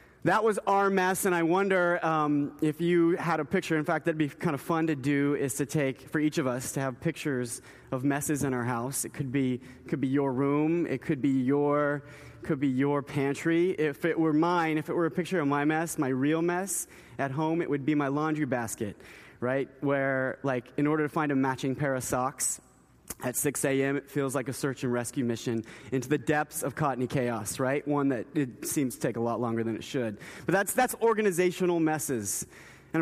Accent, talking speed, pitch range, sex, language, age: American, 225 wpm, 135-160 Hz, male, English, 30-49